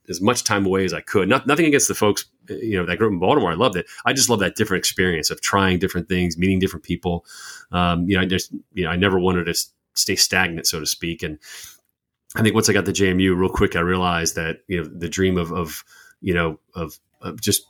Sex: male